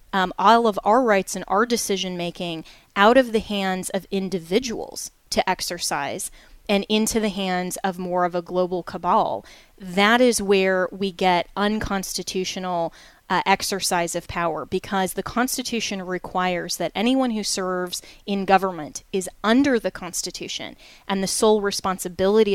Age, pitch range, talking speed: 20-39, 180-205 Hz, 145 wpm